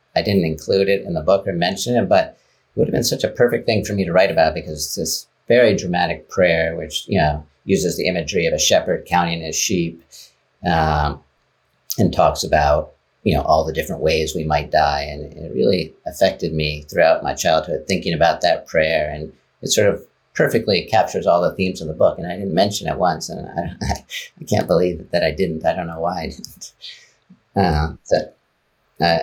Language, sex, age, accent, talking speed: English, male, 50-69, American, 205 wpm